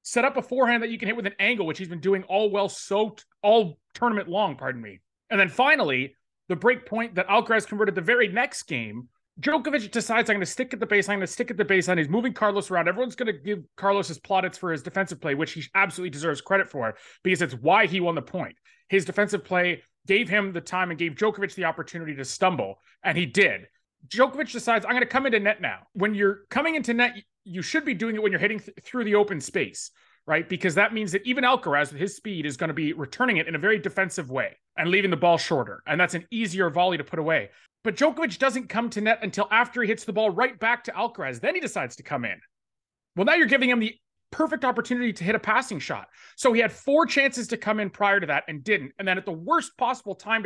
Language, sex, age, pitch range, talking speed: English, male, 30-49, 180-235 Hz, 250 wpm